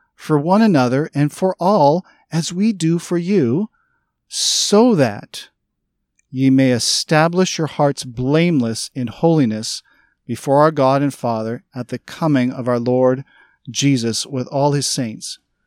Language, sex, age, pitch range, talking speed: English, male, 40-59, 120-155 Hz, 140 wpm